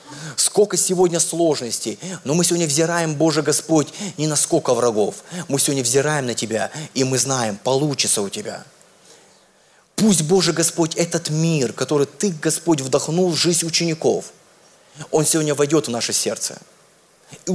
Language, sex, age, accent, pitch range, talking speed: Russian, male, 20-39, native, 140-175 Hz, 145 wpm